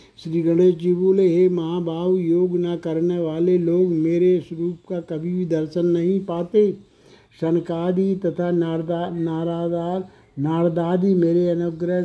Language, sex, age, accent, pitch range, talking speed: Hindi, male, 60-79, native, 160-180 Hz, 130 wpm